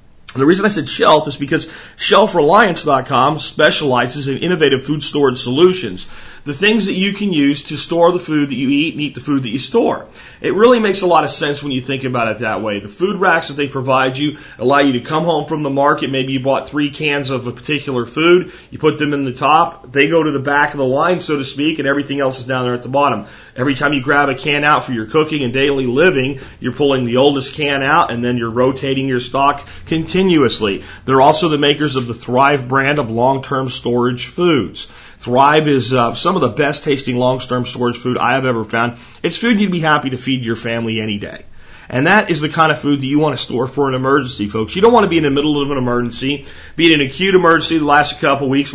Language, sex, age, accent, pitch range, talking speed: English, male, 40-59, American, 125-155 Hz, 245 wpm